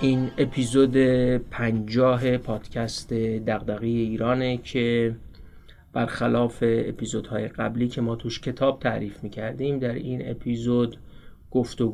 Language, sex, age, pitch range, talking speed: Persian, male, 30-49, 110-130 Hz, 100 wpm